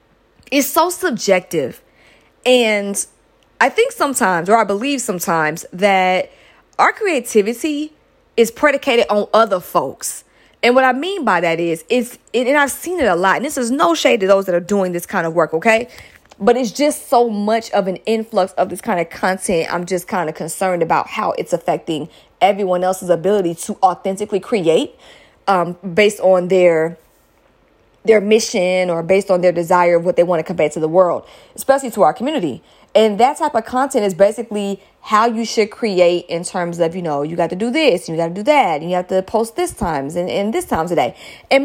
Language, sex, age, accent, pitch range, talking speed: English, female, 20-39, American, 180-245 Hz, 200 wpm